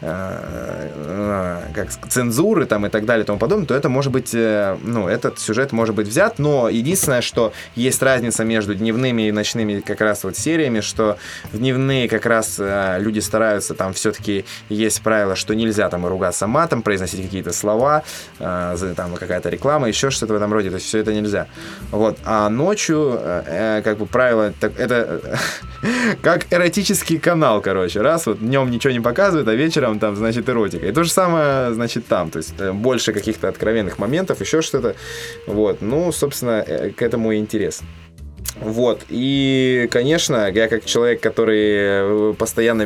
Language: Russian